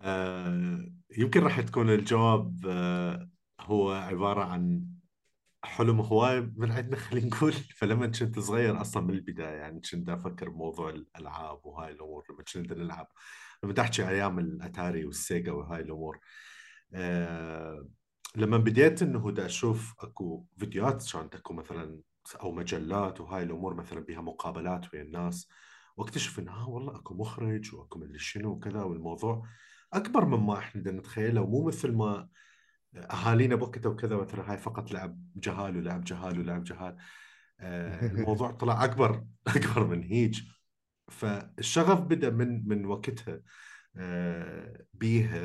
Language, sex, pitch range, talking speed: Arabic, male, 90-115 Hz, 125 wpm